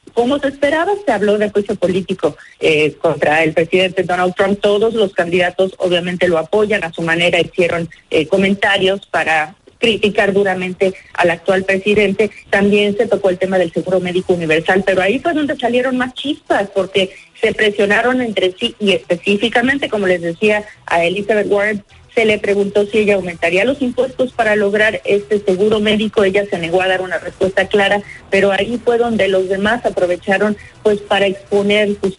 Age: 40-59